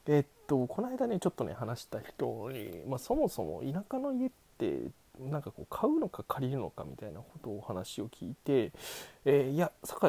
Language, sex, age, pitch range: Japanese, male, 20-39, 115-180 Hz